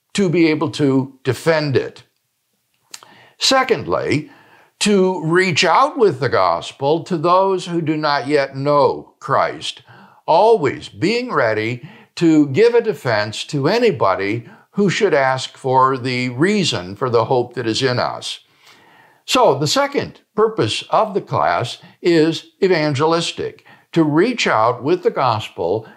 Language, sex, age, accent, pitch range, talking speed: English, male, 60-79, American, 145-220 Hz, 135 wpm